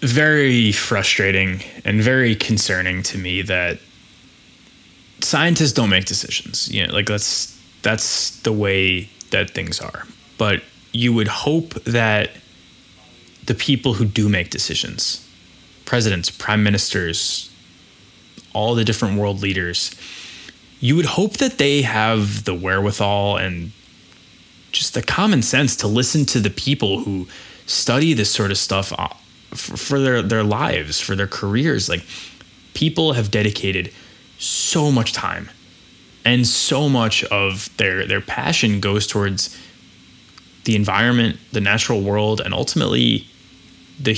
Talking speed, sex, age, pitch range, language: 130 wpm, male, 20-39, 100-125 Hz, English